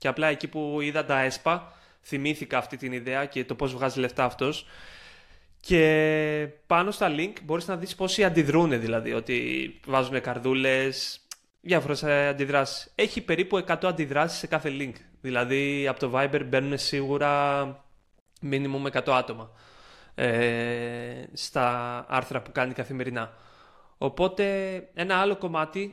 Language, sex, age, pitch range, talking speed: Greek, male, 20-39, 125-155 Hz, 135 wpm